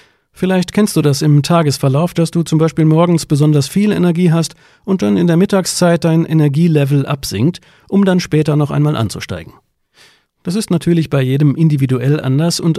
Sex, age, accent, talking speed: male, 40-59, German, 175 wpm